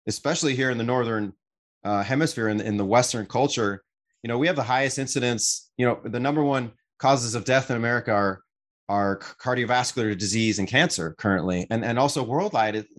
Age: 30-49